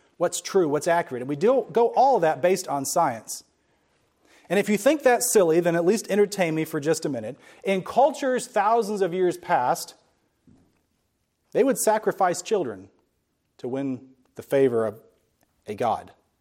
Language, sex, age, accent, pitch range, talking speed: English, male, 40-59, American, 135-200 Hz, 170 wpm